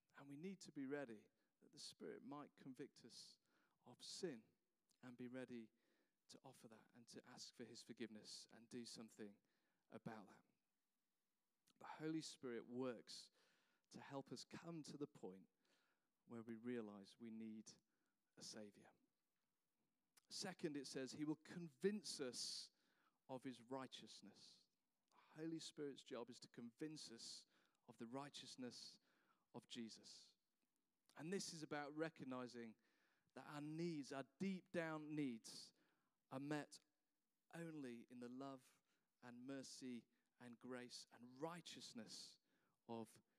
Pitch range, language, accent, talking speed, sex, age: 120-155 Hz, English, British, 135 wpm, male, 40-59